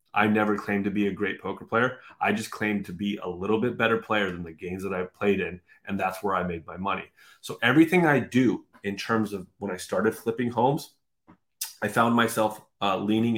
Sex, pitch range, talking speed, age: male, 100-115 Hz, 225 wpm, 30-49